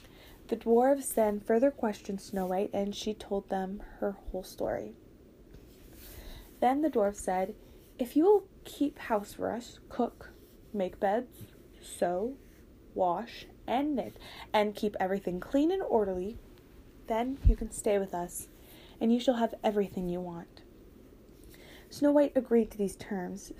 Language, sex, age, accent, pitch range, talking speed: English, female, 10-29, American, 195-235 Hz, 145 wpm